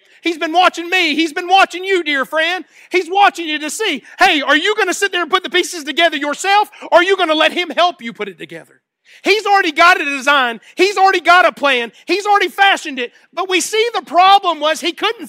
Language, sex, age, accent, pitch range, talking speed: English, male, 40-59, American, 255-345 Hz, 245 wpm